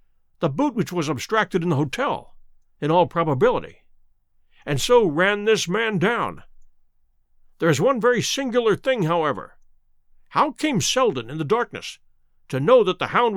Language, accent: English, American